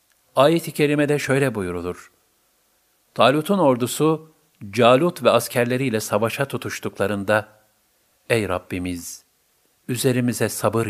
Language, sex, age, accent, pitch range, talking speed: Turkish, male, 50-69, native, 105-135 Hz, 85 wpm